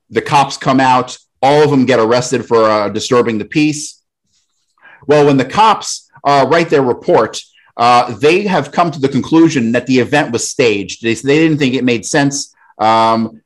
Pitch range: 120-150 Hz